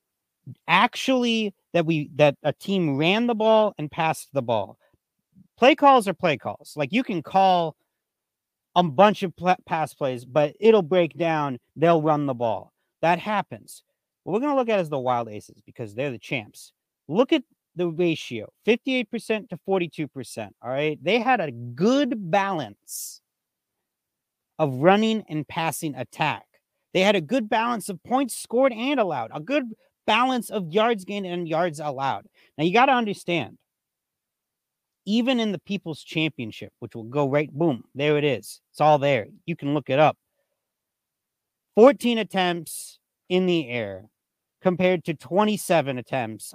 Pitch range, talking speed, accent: 145-210 Hz, 160 wpm, American